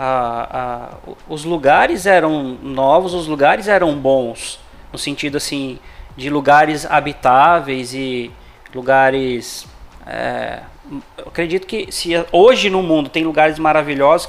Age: 20-39